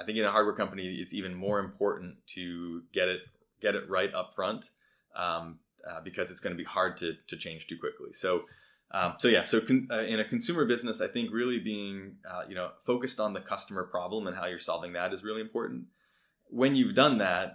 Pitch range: 85-110 Hz